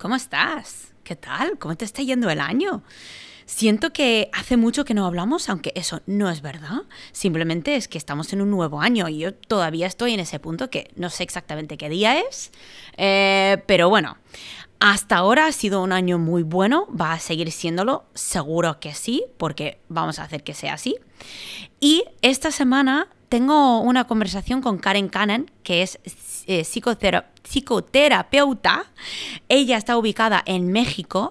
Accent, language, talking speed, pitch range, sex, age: Spanish, English, 170 wpm, 170-235 Hz, female, 20-39